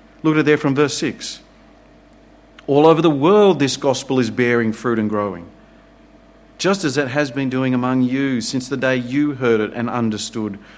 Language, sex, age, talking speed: English, male, 40-59, 190 wpm